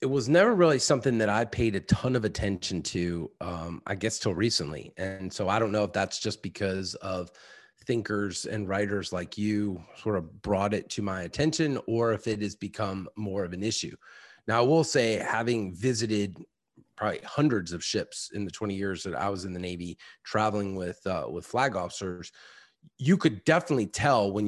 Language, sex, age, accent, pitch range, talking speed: English, male, 30-49, American, 100-120 Hz, 195 wpm